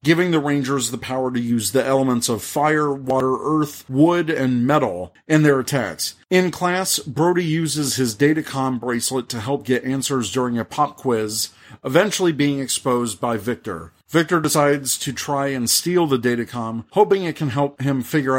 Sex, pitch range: male, 125-150 Hz